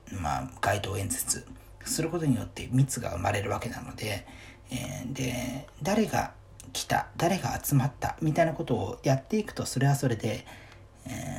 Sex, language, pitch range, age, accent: male, Japanese, 110-135 Hz, 40-59, native